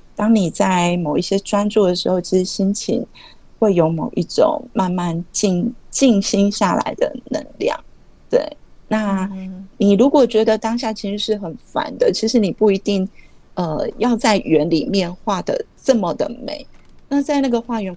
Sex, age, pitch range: female, 30-49, 180-220 Hz